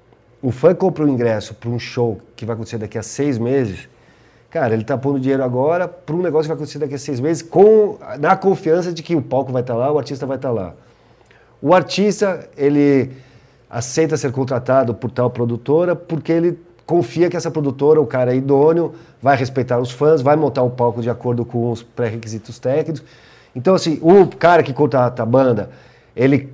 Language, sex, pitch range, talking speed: Portuguese, male, 120-155 Hz, 205 wpm